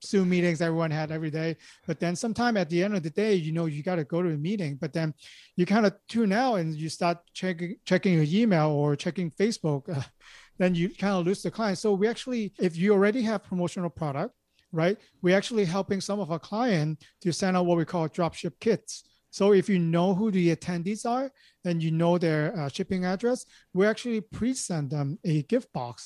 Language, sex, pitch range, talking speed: English, male, 160-200 Hz, 225 wpm